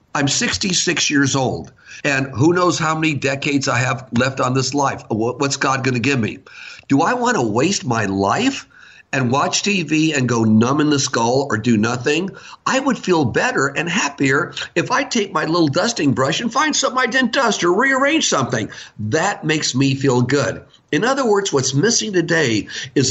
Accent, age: American, 50-69